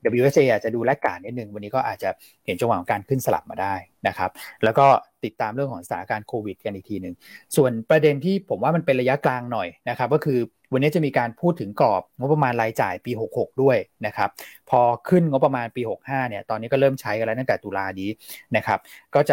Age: 30-49